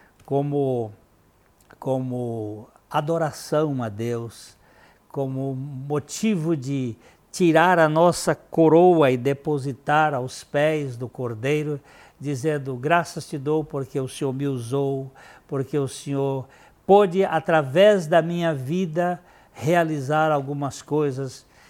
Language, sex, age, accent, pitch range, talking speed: Portuguese, male, 60-79, Brazilian, 125-155 Hz, 105 wpm